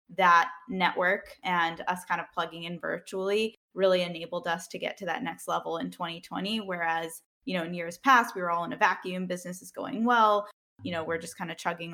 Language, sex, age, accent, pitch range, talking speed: English, female, 10-29, American, 170-200 Hz, 215 wpm